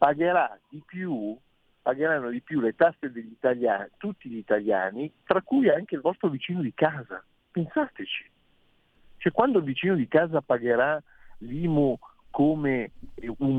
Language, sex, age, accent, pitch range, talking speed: Italian, male, 50-69, native, 120-155 Hz, 135 wpm